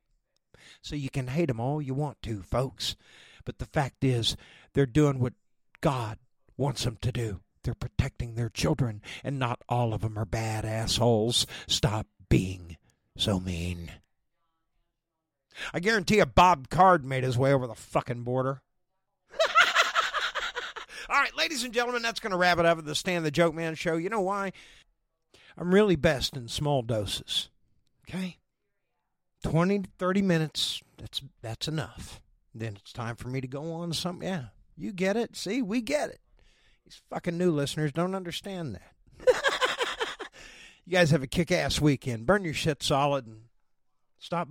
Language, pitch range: English, 115-170 Hz